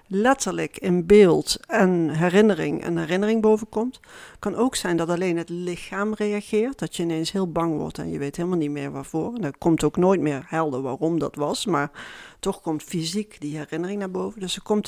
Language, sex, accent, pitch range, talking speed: Dutch, female, Dutch, 175-215 Hz, 200 wpm